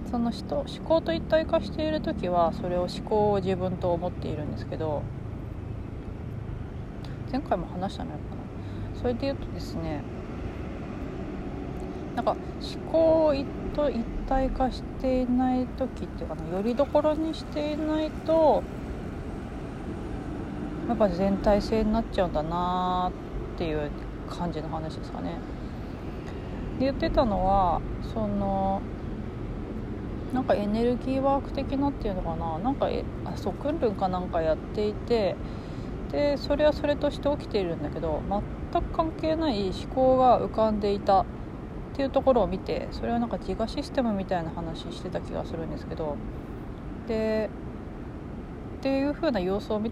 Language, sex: Japanese, female